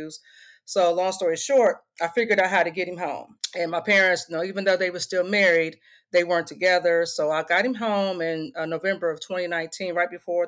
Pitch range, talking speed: 160-200 Hz, 220 wpm